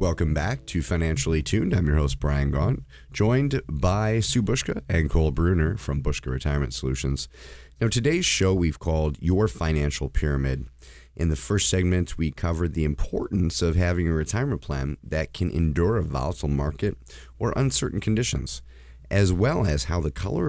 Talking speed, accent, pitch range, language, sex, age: 165 wpm, American, 70-100 Hz, English, male, 30-49